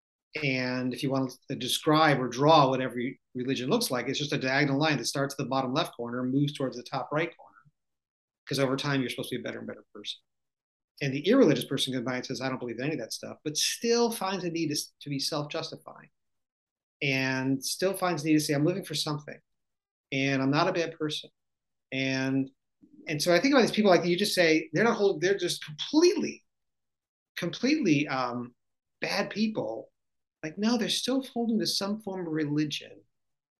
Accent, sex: American, male